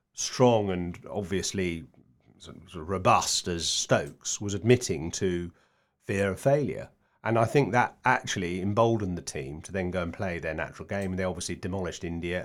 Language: English